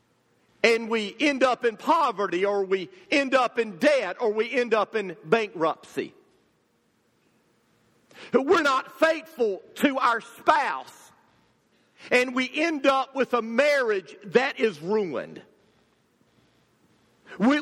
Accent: American